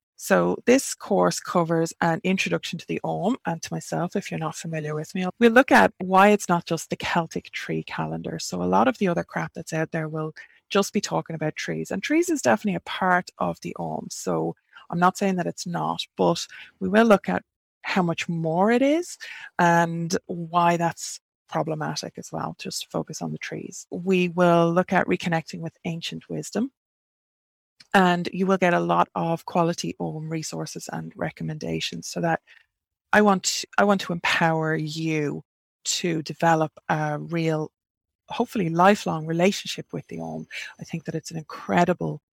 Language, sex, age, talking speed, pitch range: English, female, 20-39, 180 wpm, 155-190 Hz